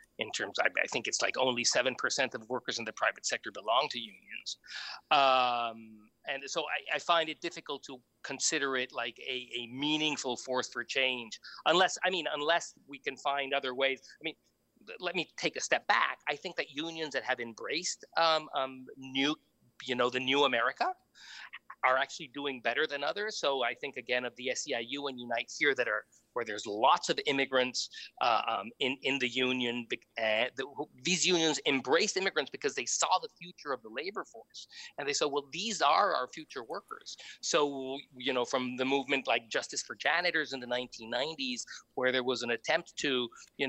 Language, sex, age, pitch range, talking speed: English, male, 40-59, 125-165 Hz, 195 wpm